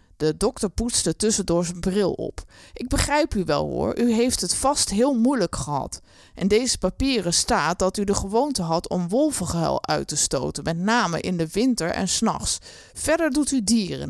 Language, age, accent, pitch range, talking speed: Dutch, 20-39, Dutch, 180-250 Hz, 185 wpm